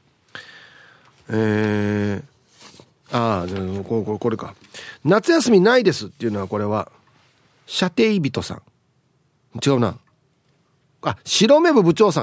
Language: Japanese